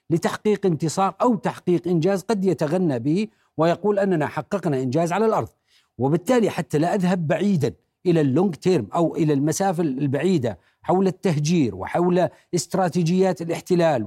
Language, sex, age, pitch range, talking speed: Arabic, male, 50-69, 155-195 Hz, 130 wpm